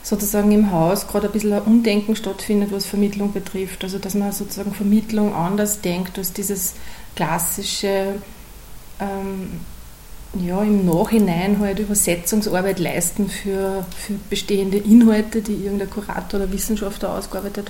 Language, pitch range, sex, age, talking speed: German, 190-215 Hz, female, 30-49, 130 wpm